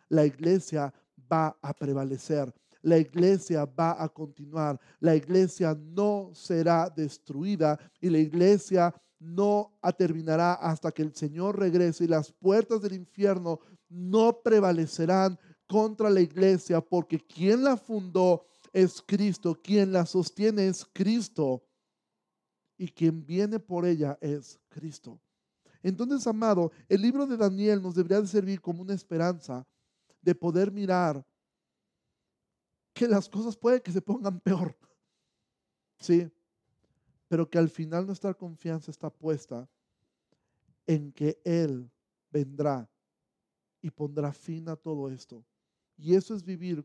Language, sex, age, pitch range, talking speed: Spanish, male, 40-59, 155-190 Hz, 130 wpm